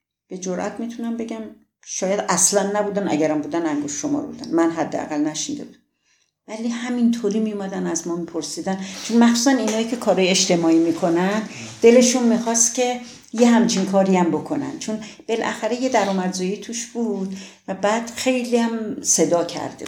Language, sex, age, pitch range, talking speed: Persian, female, 50-69, 165-235 Hz, 150 wpm